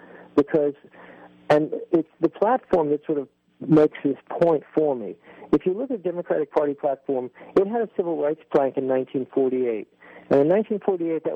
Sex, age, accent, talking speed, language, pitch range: male, 50-69, American, 170 wpm, English, 125-155 Hz